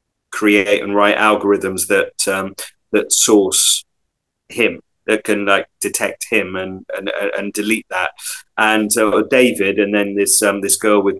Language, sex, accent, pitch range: English, male, British, 95-110 Hz